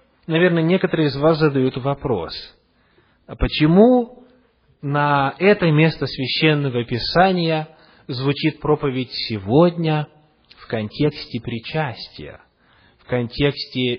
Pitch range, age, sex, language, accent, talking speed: 120-185 Hz, 30-49, male, Russian, native, 90 wpm